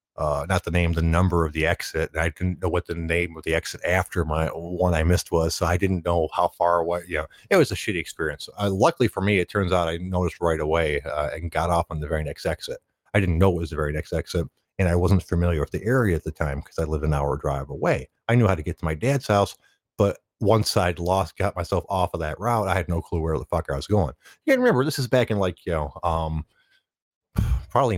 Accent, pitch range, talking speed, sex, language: American, 80-95 Hz, 270 wpm, male, English